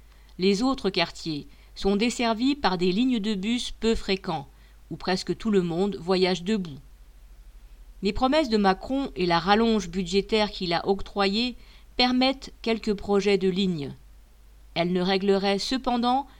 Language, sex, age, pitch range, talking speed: French, female, 50-69, 170-220 Hz, 145 wpm